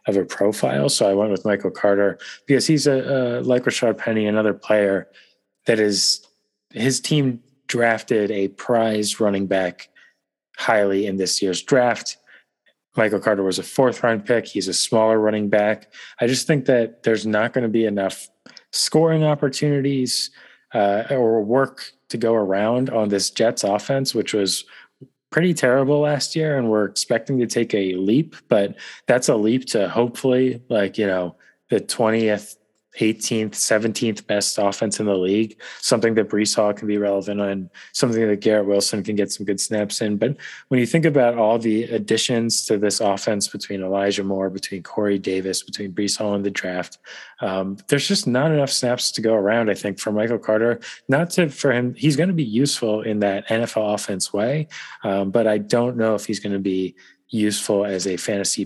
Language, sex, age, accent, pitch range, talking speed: English, male, 30-49, American, 100-120 Hz, 185 wpm